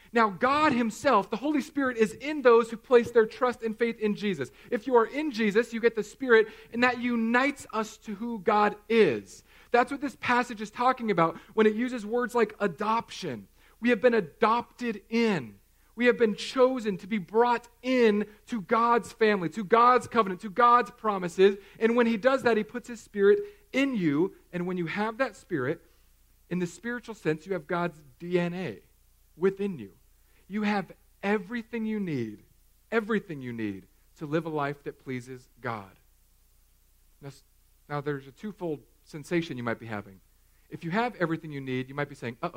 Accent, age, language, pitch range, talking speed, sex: American, 40-59, English, 145-235 Hz, 185 wpm, male